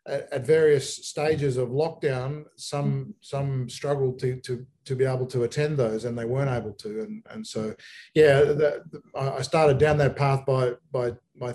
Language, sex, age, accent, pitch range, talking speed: English, male, 40-59, Australian, 120-145 Hz, 175 wpm